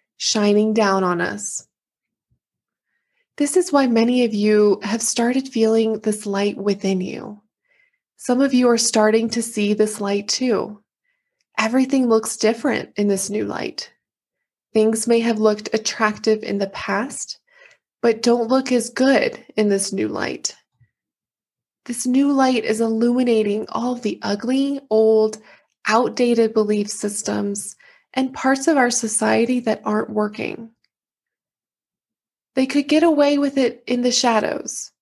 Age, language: 20-39, English